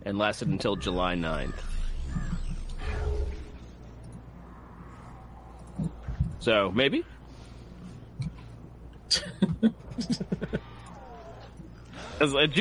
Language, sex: English, male